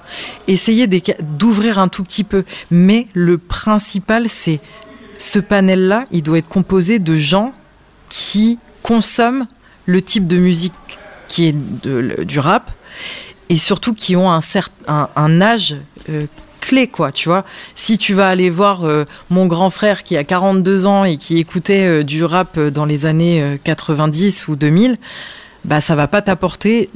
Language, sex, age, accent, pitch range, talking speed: French, female, 20-39, French, 160-200 Hz, 160 wpm